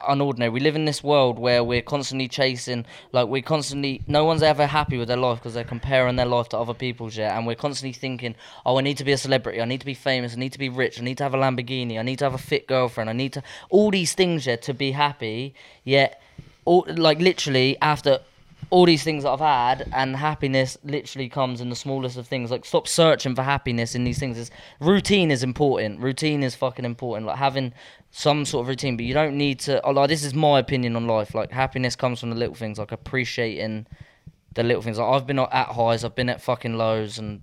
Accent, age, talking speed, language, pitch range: British, 20-39, 240 wpm, English, 120-145 Hz